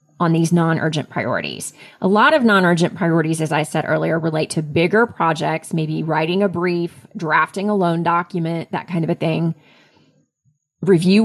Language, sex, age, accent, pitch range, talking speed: English, female, 30-49, American, 155-180 Hz, 165 wpm